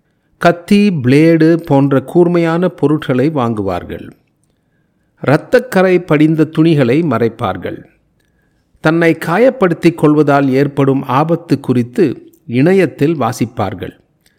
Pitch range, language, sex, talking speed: 125-165 Hz, Tamil, male, 75 wpm